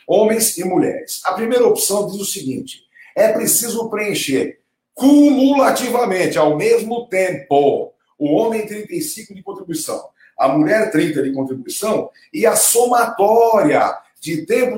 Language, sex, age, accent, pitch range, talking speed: Portuguese, male, 50-69, Brazilian, 185-305 Hz, 125 wpm